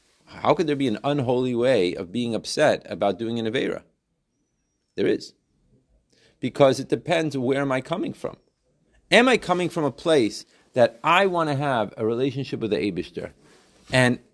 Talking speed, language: 170 wpm, English